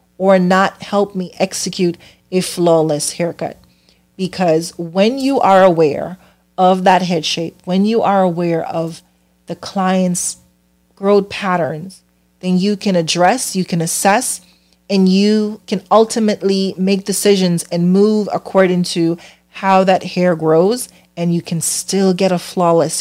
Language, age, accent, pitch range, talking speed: English, 30-49, American, 160-195 Hz, 140 wpm